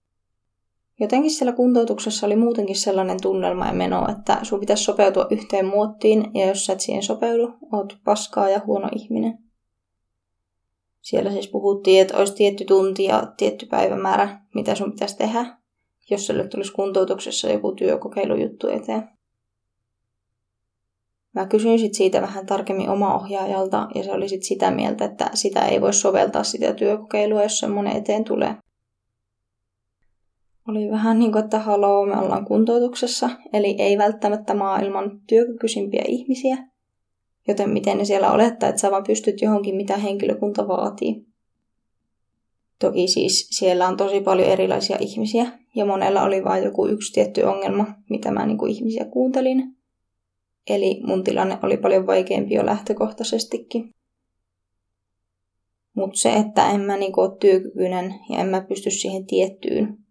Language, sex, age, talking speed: Finnish, female, 20-39, 140 wpm